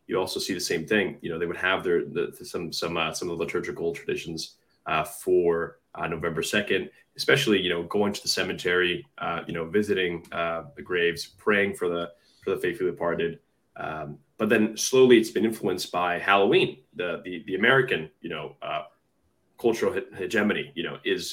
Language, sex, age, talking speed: English, male, 20-39, 190 wpm